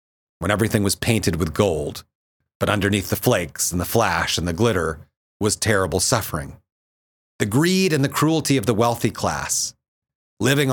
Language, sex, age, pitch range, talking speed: English, male, 40-59, 90-120 Hz, 160 wpm